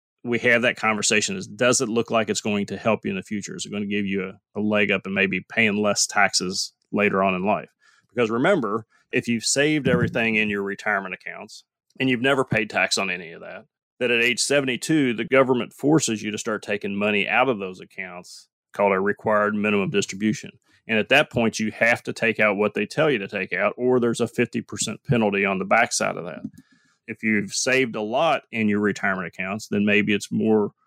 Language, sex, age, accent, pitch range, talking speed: English, male, 30-49, American, 100-120 Hz, 225 wpm